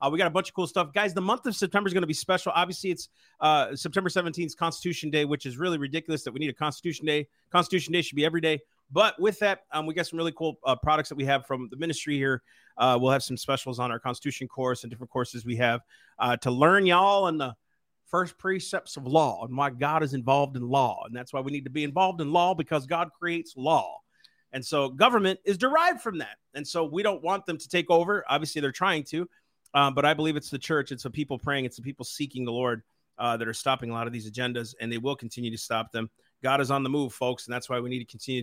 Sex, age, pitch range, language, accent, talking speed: male, 40-59, 130-175 Hz, English, American, 265 wpm